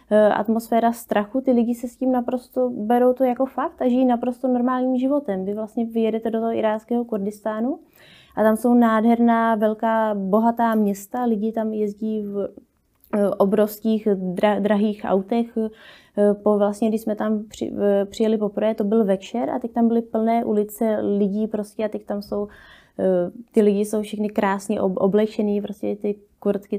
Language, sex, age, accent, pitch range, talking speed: Czech, female, 20-39, native, 200-230 Hz, 150 wpm